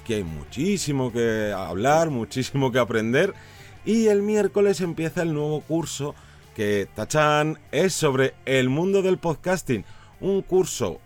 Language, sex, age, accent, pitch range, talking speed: Spanish, male, 30-49, Spanish, 115-155 Hz, 135 wpm